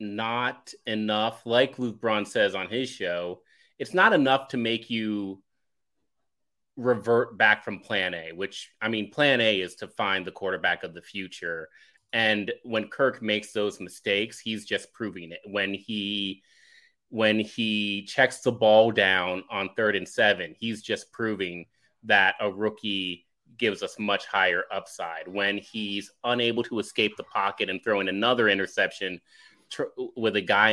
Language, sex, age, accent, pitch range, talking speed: English, male, 30-49, American, 100-125 Hz, 160 wpm